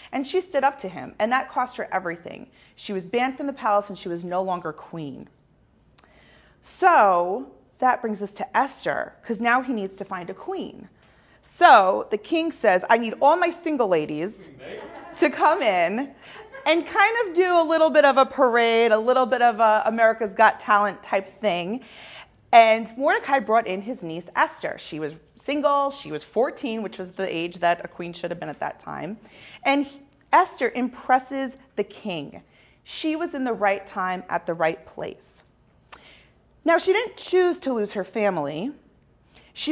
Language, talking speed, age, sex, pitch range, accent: English, 180 wpm, 30-49, female, 195-285 Hz, American